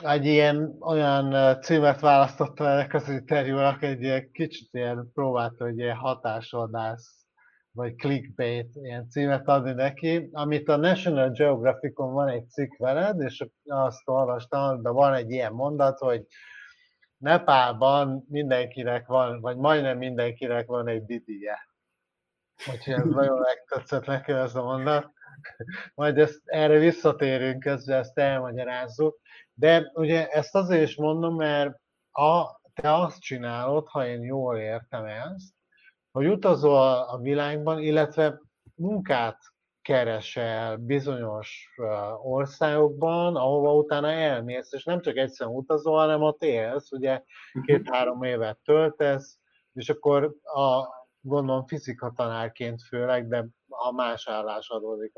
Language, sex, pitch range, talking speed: Hungarian, male, 125-150 Hz, 125 wpm